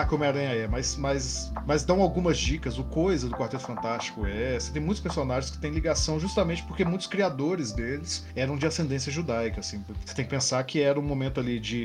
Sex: male